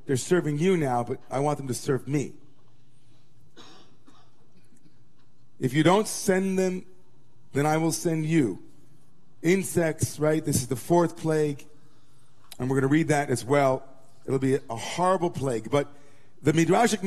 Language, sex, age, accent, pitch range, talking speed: English, male, 40-59, American, 135-180 Hz, 150 wpm